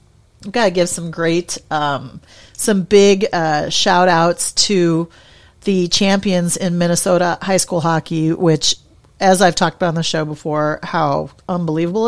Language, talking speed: English, 155 wpm